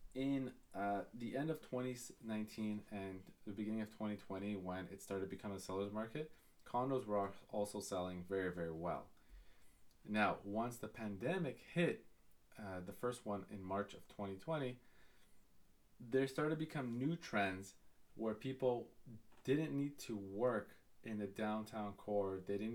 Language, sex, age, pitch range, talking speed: English, male, 20-39, 95-120 Hz, 150 wpm